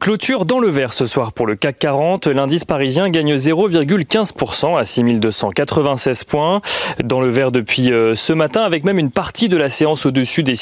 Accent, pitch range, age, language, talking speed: French, 120-165 Hz, 30-49, French, 180 wpm